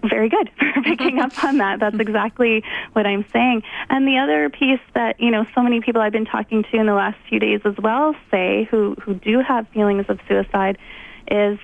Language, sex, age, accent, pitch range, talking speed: English, female, 20-39, American, 195-240 Hz, 215 wpm